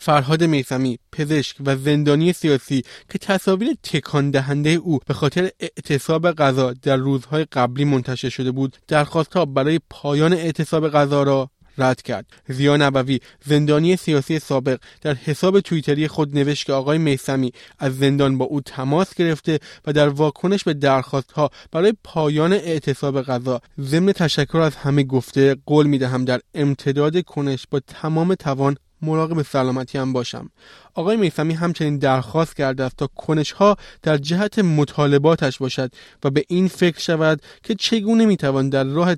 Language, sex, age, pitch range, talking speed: Persian, male, 20-39, 135-165 Hz, 155 wpm